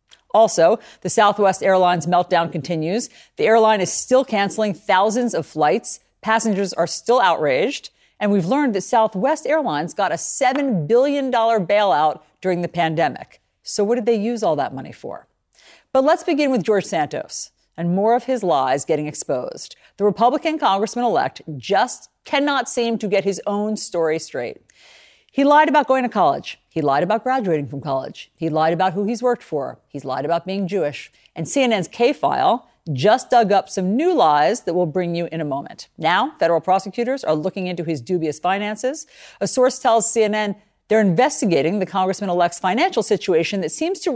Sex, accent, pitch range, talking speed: female, American, 175-245 Hz, 175 wpm